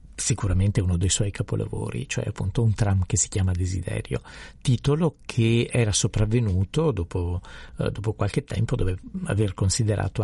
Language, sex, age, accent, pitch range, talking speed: Italian, male, 50-69, native, 95-115 Hz, 140 wpm